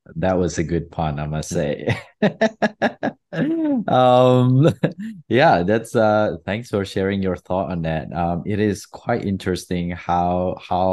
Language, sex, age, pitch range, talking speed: English, male, 20-39, 85-110 Hz, 145 wpm